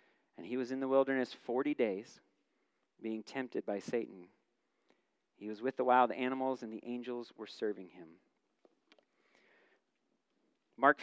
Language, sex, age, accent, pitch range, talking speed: English, male, 40-59, American, 110-135 Hz, 130 wpm